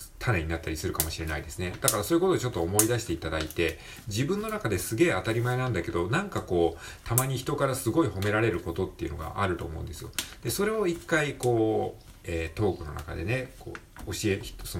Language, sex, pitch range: Japanese, male, 85-125 Hz